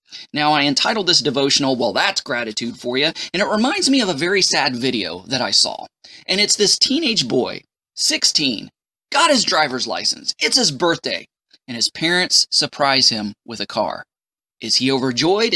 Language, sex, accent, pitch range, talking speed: English, male, American, 145-230 Hz, 175 wpm